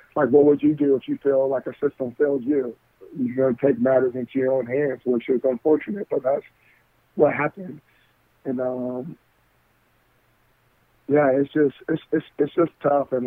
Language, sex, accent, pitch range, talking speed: English, male, American, 125-140 Hz, 175 wpm